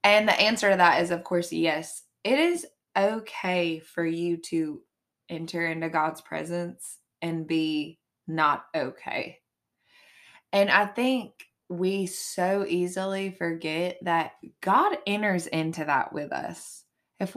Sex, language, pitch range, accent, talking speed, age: female, English, 165-200 Hz, American, 130 wpm, 20-39